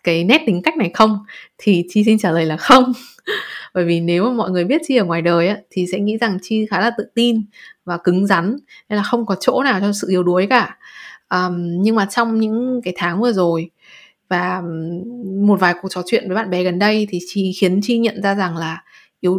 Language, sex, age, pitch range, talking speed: Vietnamese, female, 20-39, 180-240 Hz, 235 wpm